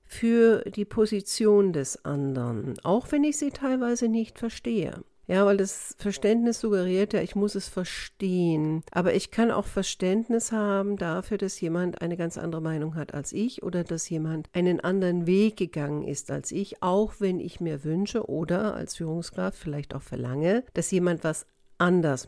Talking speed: 170 wpm